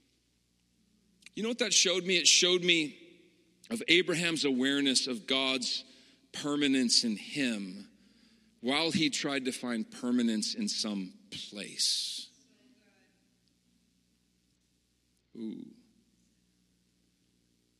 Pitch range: 140-235 Hz